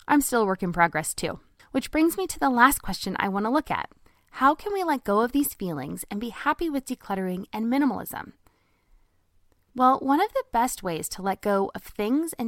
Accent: American